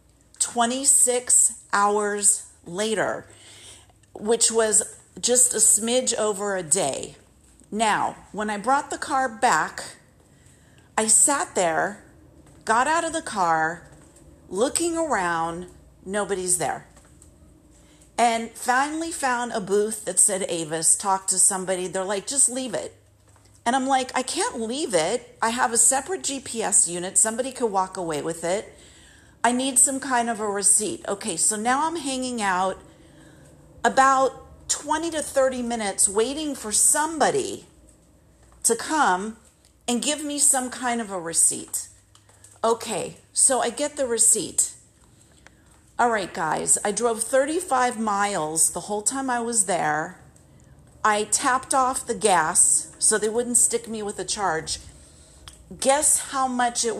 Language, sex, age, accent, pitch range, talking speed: English, female, 40-59, American, 190-260 Hz, 140 wpm